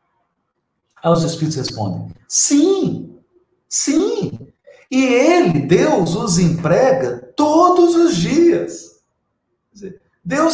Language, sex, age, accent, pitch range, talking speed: Portuguese, male, 50-69, Brazilian, 150-250 Hz, 85 wpm